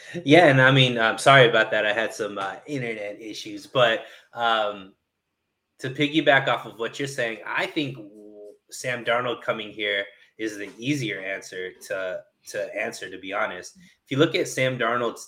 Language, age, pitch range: English, 20-39, 105-145 Hz